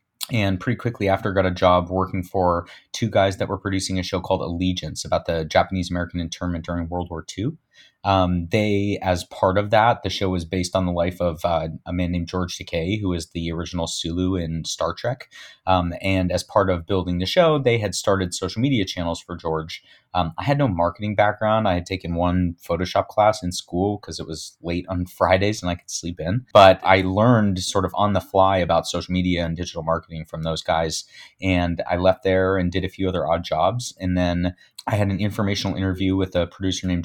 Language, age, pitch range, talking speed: English, 30-49, 85-105 Hz, 220 wpm